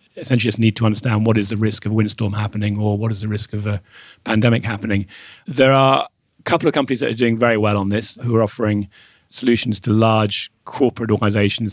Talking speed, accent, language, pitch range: 220 wpm, British, English, 105-115 Hz